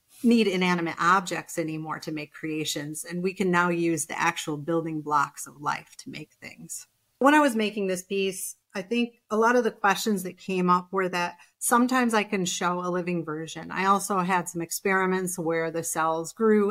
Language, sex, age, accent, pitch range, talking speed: English, female, 30-49, American, 165-195 Hz, 200 wpm